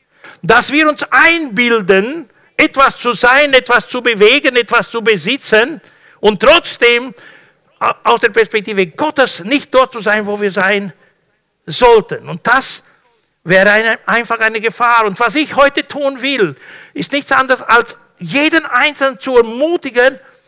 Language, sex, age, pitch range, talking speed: German, male, 60-79, 205-270 Hz, 140 wpm